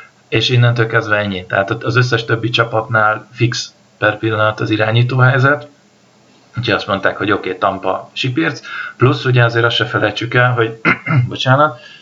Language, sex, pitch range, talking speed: Hungarian, male, 105-125 Hz, 160 wpm